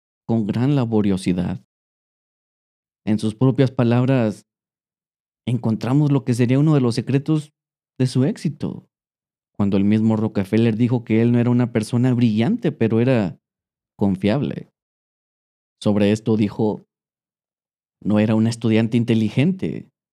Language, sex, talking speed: Spanish, male, 120 wpm